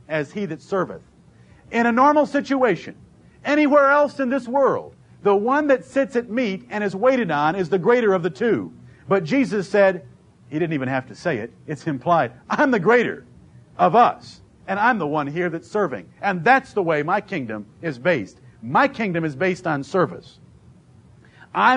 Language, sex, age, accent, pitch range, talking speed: English, male, 50-69, American, 145-195 Hz, 185 wpm